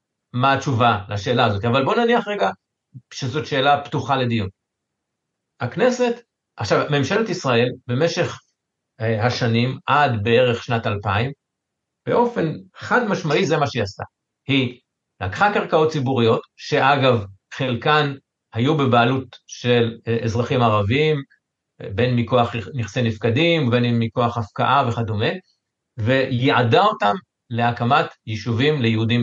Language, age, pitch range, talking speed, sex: Hebrew, 50-69, 115-140 Hz, 110 wpm, male